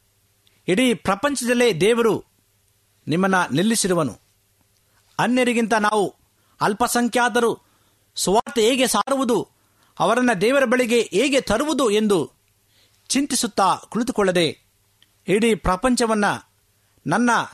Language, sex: Kannada, male